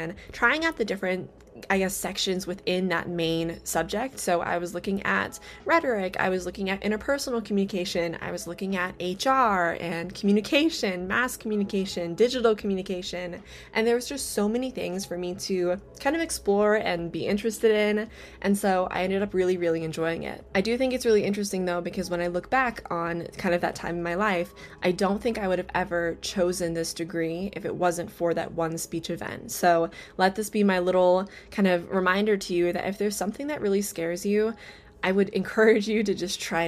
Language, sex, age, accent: English, female, 20-39, American